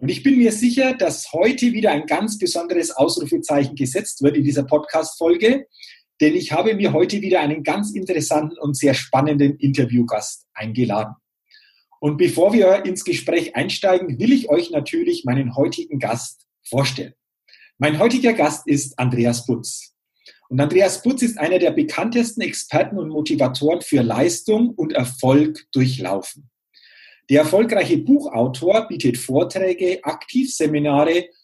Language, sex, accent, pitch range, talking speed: German, male, German, 140-220 Hz, 135 wpm